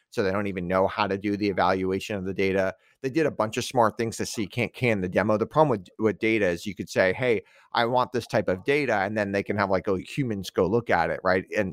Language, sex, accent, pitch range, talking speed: English, male, American, 100-125 Hz, 285 wpm